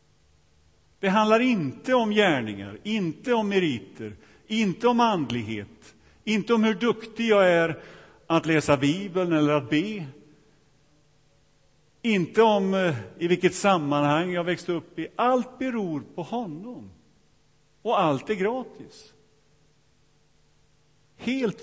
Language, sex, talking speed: Swedish, male, 115 wpm